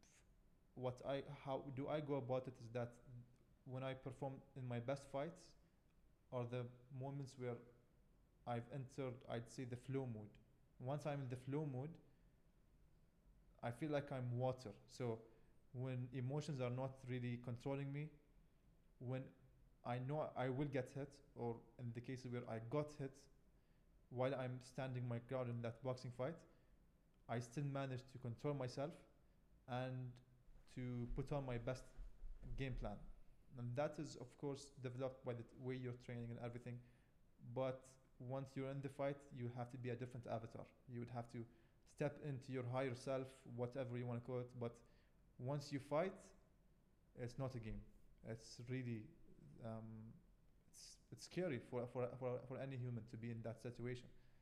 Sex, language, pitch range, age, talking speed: male, English, 120-135 Hz, 20-39, 165 wpm